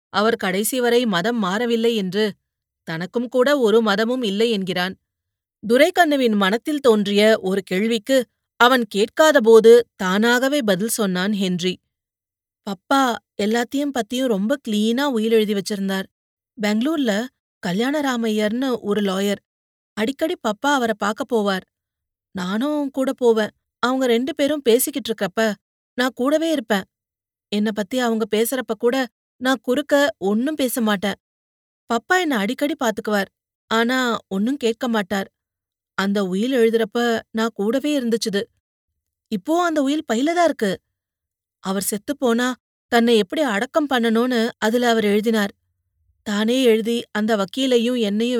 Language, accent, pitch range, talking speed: Tamil, native, 200-250 Hz, 115 wpm